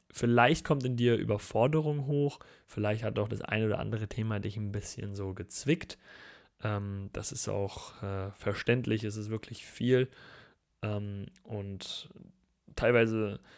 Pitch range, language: 100-115 Hz, German